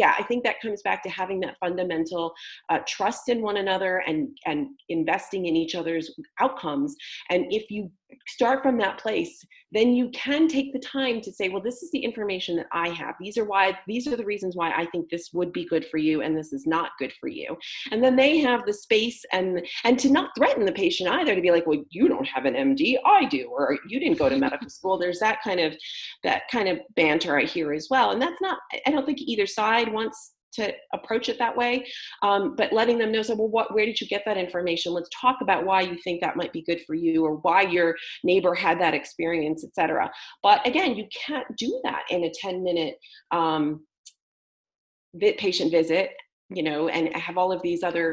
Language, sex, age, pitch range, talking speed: English, female, 30-49, 165-240 Hz, 225 wpm